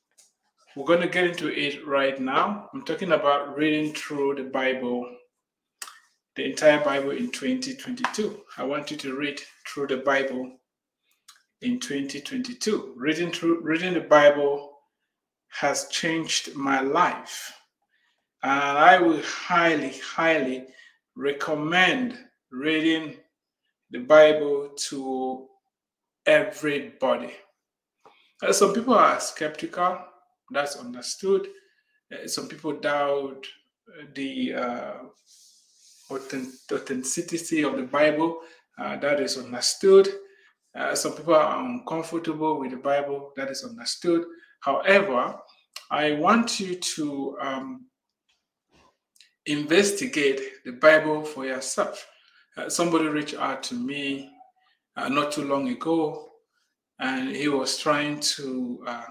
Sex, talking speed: male, 110 wpm